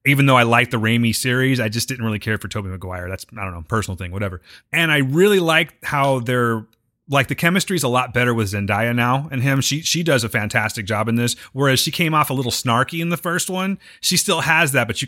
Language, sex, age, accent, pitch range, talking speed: English, male, 30-49, American, 110-145 Hz, 265 wpm